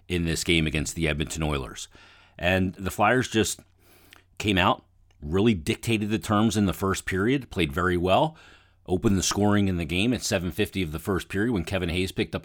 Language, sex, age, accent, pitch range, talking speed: English, male, 40-59, American, 80-95 Hz, 200 wpm